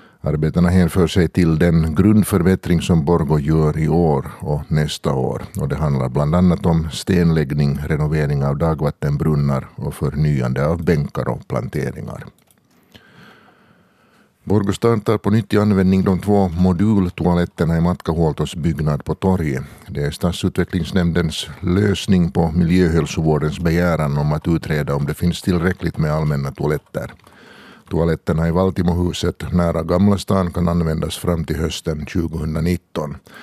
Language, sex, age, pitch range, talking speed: Swedish, male, 60-79, 80-95 Hz, 130 wpm